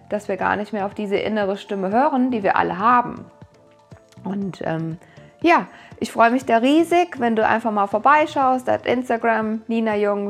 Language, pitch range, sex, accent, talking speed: German, 205-250 Hz, female, German, 180 wpm